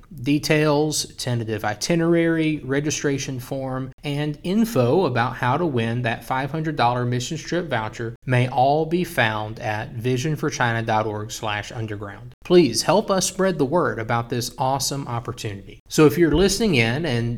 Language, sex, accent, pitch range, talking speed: English, male, American, 115-155 Hz, 135 wpm